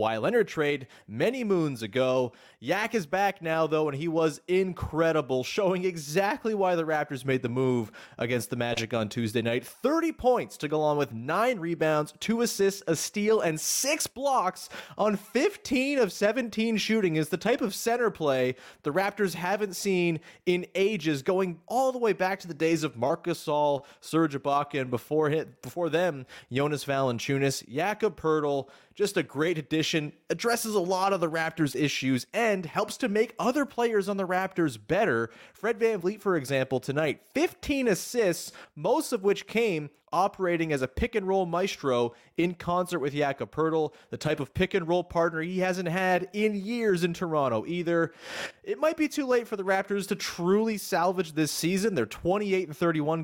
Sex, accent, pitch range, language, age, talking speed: male, American, 145-205 Hz, English, 30-49, 175 wpm